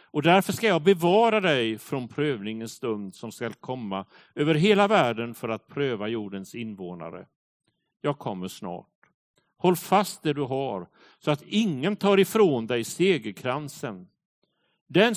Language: Swedish